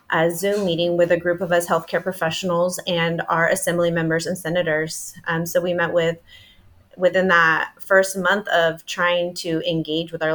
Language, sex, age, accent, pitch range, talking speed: English, female, 30-49, American, 165-190 Hz, 180 wpm